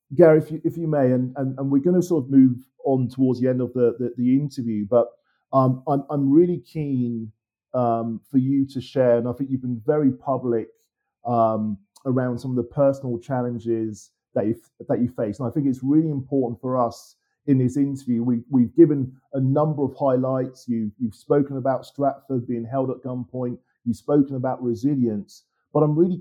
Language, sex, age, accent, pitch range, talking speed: English, male, 40-59, British, 115-135 Hz, 195 wpm